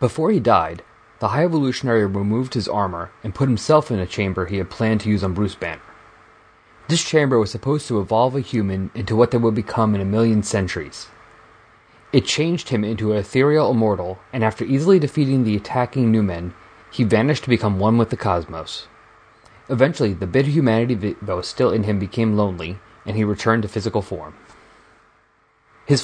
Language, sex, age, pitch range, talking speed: English, male, 30-49, 100-125 Hz, 190 wpm